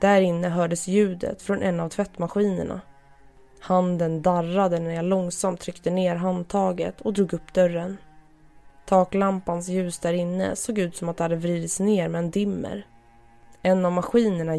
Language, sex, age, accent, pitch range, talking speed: Swedish, female, 20-39, native, 170-190 Hz, 150 wpm